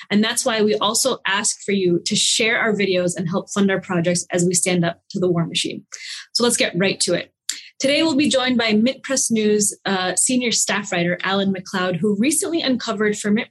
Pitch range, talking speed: 190-240 Hz, 220 wpm